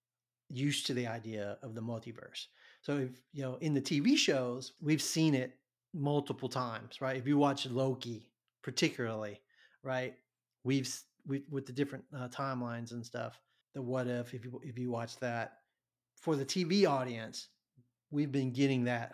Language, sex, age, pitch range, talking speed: English, male, 30-49, 120-135 Hz, 165 wpm